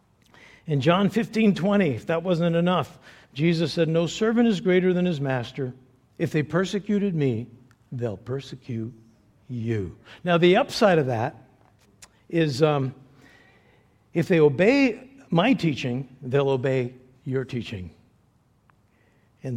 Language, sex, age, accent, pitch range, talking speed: English, male, 60-79, American, 120-180 Hz, 125 wpm